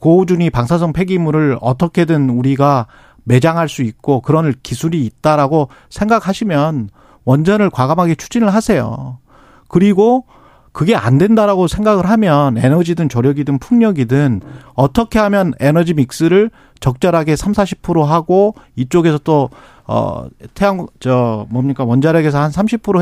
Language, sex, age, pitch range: Korean, male, 40-59, 135-195 Hz